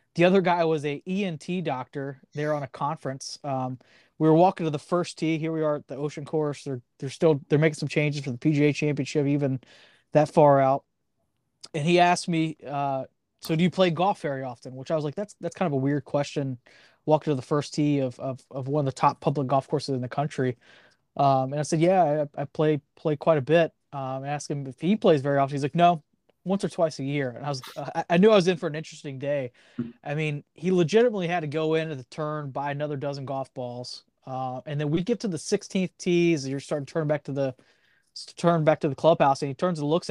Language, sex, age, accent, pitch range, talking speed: English, male, 20-39, American, 140-170 Hz, 250 wpm